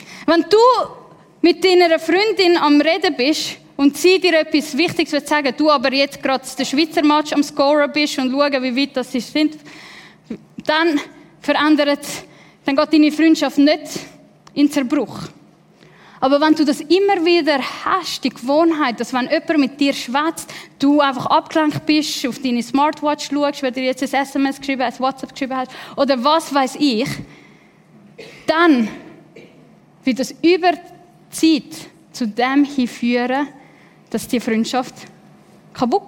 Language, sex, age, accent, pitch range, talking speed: German, female, 10-29, Swiss, 260-320 Hz, 150 wpm